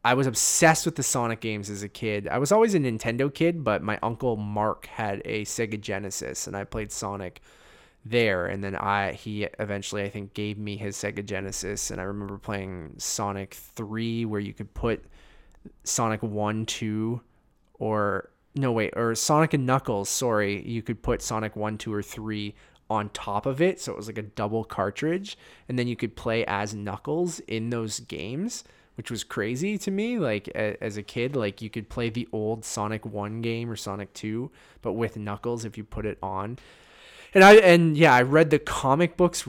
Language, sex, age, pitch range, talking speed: English, male, 20-39, 105-125 Hz, 195 wpm